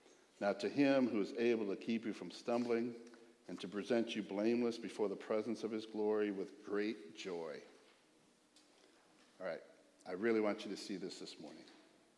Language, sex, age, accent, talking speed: English, male, 60-79, American, 175 wpm